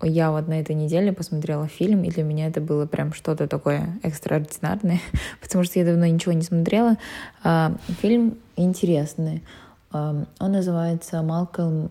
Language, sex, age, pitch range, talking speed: Russian, female, 20-39, 160-185 Hz, 140 wpm